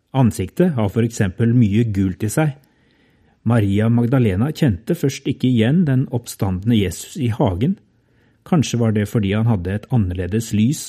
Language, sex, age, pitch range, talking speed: English, male, 30-49, 105-125 Hz, 155 wpm